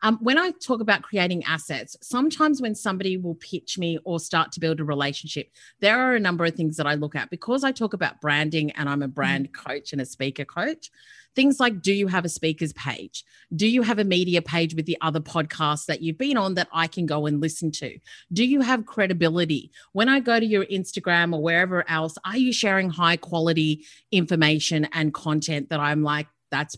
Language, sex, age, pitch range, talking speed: English, female, 30-49, 155-205 Hz, 215 wpm